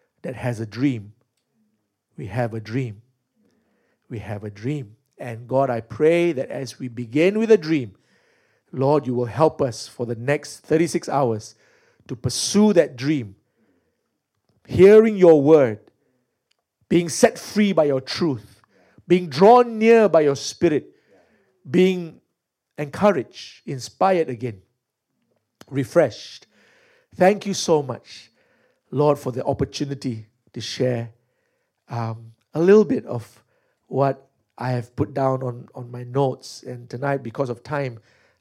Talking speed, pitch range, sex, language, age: 135 wpm, 120-160 Hz, male, English, 50-69